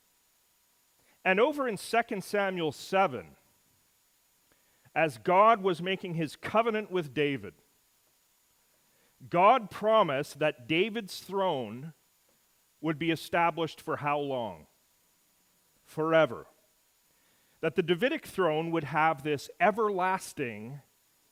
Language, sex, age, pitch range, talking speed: English, male, 40-59, 140-185 Hz, 95 wpm